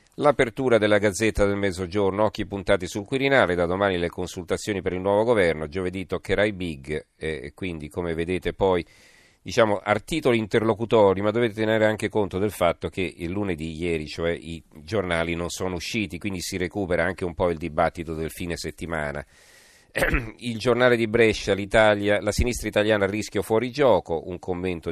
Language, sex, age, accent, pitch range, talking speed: Italian, male, 40-59, native, 85-105 Hz, 170 wpm